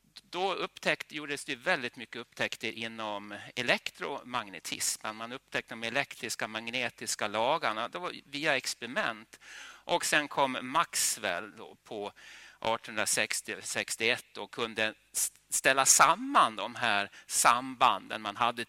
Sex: male